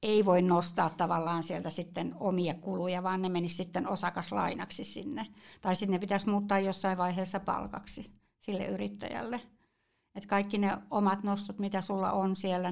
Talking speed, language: 155 wpm, Finnish